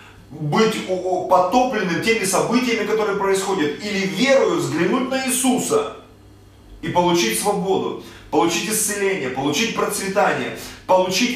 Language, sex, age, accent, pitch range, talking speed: Russian, male, 30-49, native, 130-185 Hz, 100 wpm